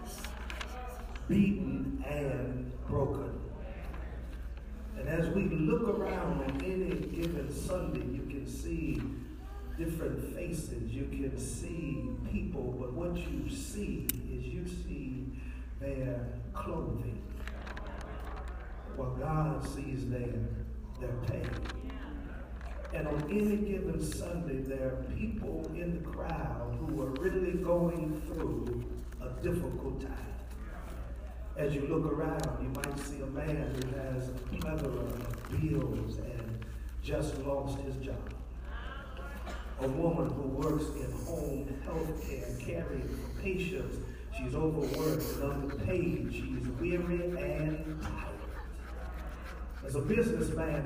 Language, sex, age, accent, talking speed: English, male, 50-69, American, 115 wpm